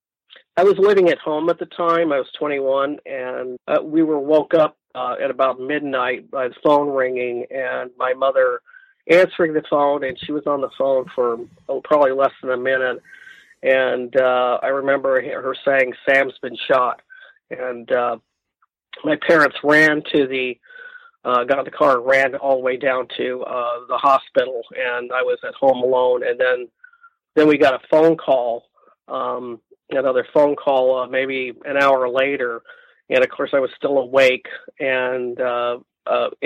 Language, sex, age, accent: English, male, 40-59, American